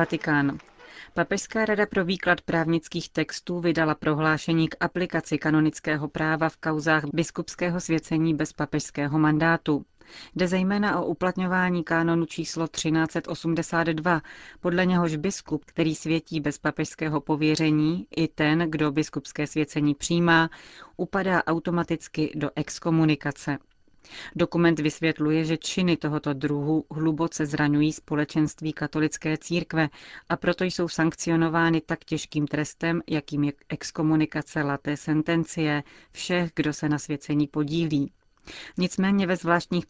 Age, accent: 30-49, native